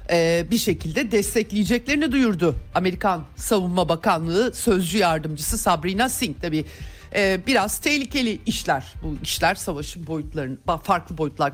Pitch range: 150-210 Hz